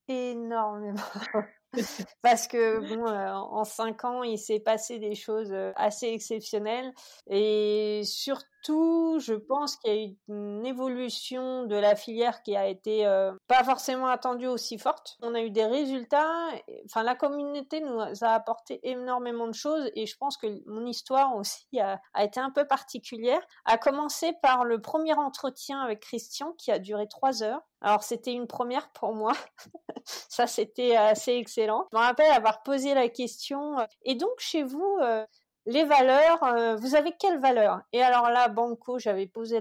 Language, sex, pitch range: French, female, 215-260 Hz